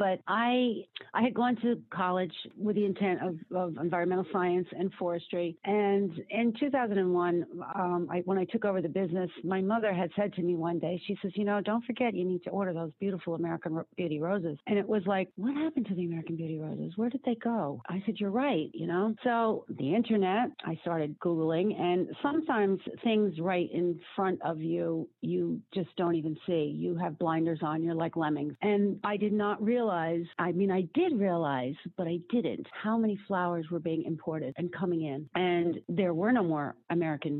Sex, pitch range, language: female, 170-205 Hz, English